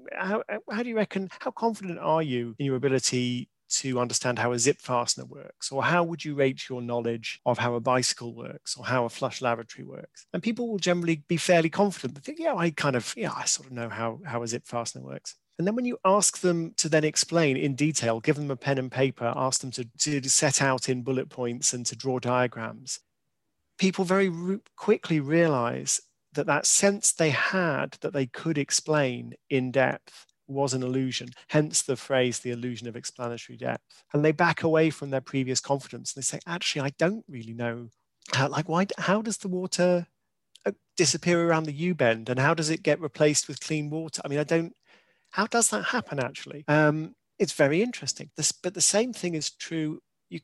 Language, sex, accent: English, male, British